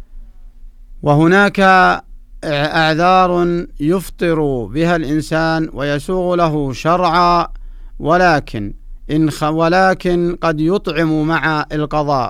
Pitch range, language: 150-170 Hz, Arabic